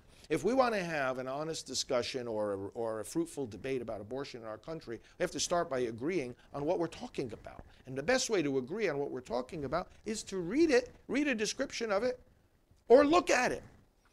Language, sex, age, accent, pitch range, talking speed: English, male, 50-69, American, 125-185 Hz, 225 wpm